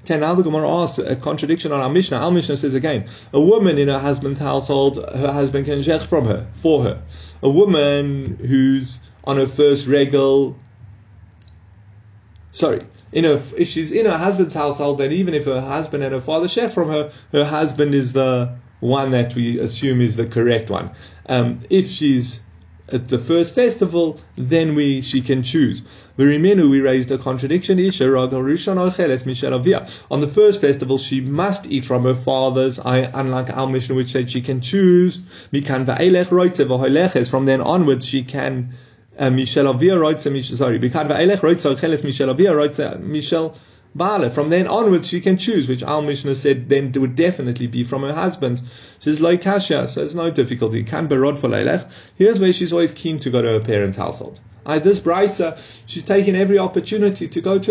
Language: English